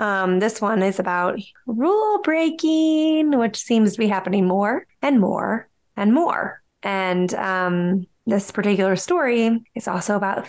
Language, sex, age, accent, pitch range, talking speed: English, female, 20-39, American, 190-225 Hz, 145 wpm